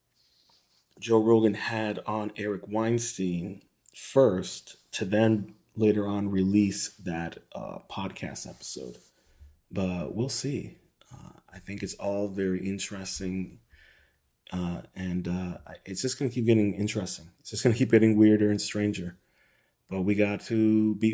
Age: 30-49